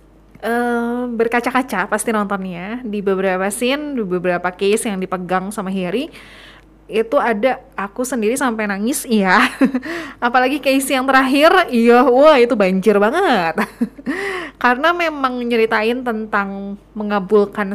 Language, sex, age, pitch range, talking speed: Indonesian, female, 20-39, 190-250 Hz, 120 wpm